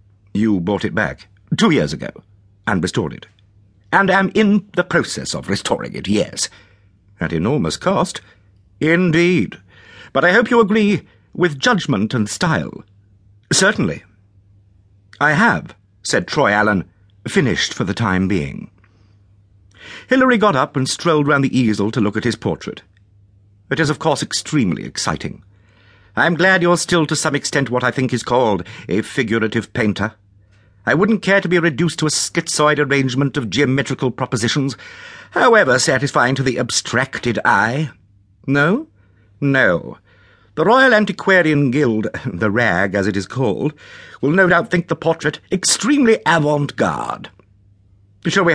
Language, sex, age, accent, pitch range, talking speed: English, male, 60-79, British, 100-165 Hz, 150 wpm